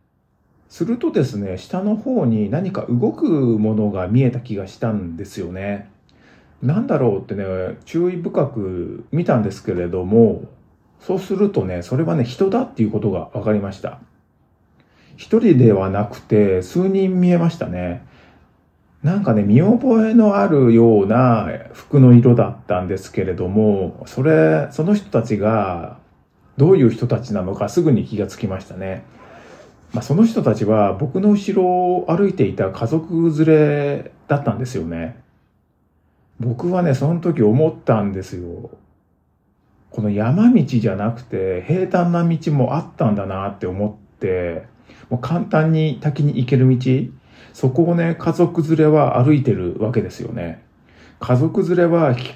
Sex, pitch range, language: male, 100-160 Hz, Japanese